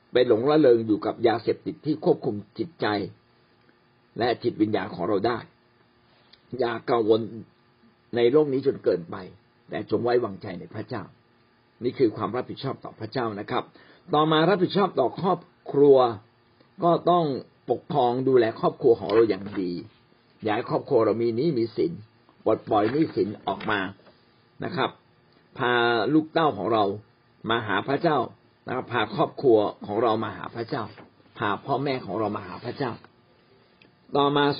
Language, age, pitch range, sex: Thai, 60-79, 115-150 Hz, male